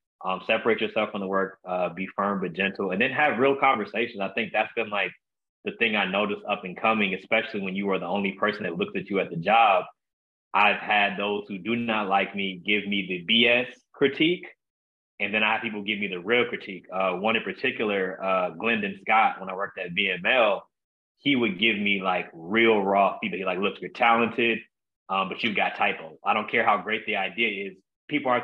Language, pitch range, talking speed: English, 95-115 Hz, 220 wpm